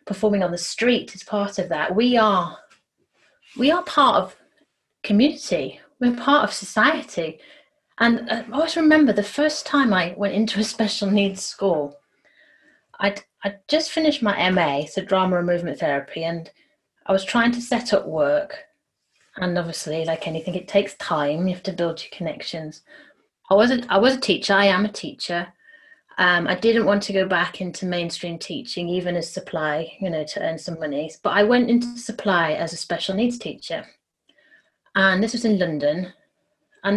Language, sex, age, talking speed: English, female, 30-49, 180 wpm